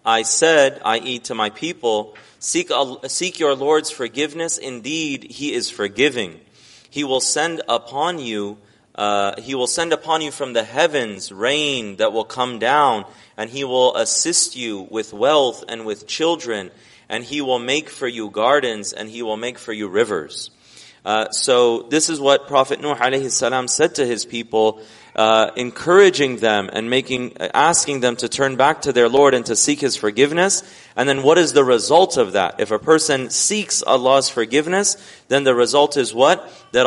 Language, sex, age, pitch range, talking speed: English, male, 30-49, 115-145 Hz, 175 wpm